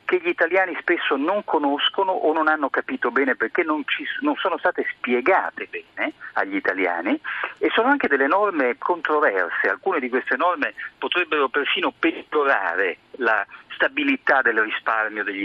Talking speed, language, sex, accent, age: 150 wpm, Italian, male, native, 50-69